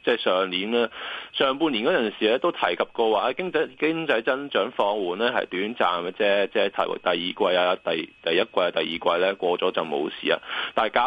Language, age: Chinese, 20-39